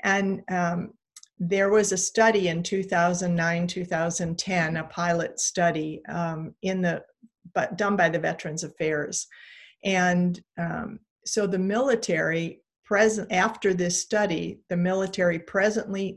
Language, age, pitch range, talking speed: English, 50-69, 170-195 Hz, 125 wpm